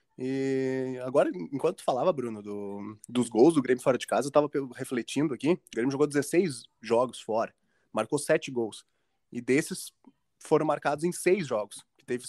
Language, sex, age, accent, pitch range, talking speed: Portuguese, male, 20-39, Brazilian, 120-170 Hz, 175 wpm